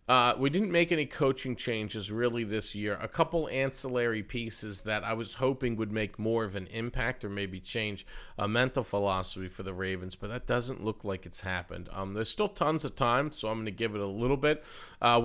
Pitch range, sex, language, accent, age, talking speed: 95-125 Hz, male, English, American, 40-59, 220 wpm